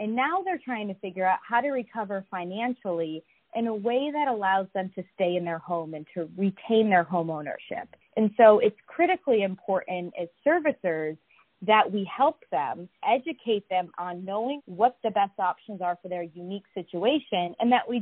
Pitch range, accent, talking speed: 175-235 Hz, American, 185 wpm